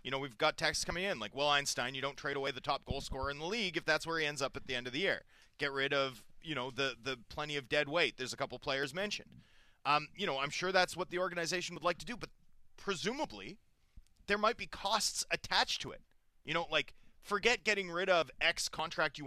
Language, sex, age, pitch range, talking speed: English, male, 30-49, 140-185 Hz, 250 wpm